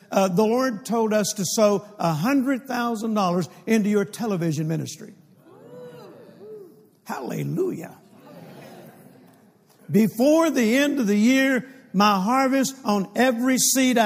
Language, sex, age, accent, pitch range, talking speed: English, male, 60-79, American, 180-225 Hz, 100 wpm